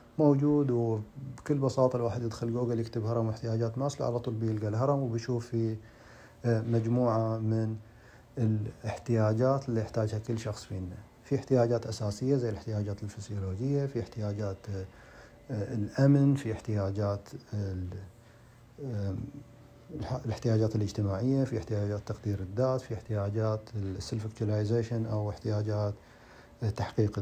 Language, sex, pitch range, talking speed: Arabic, male, 105-120 Hz, 105 wpm